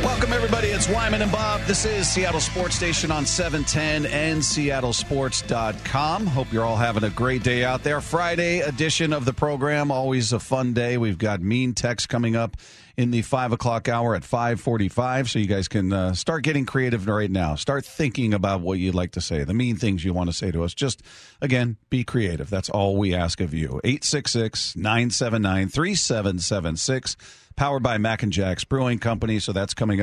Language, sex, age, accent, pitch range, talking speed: English, male, 40-59, American, 105-130 Hz, 210 wpm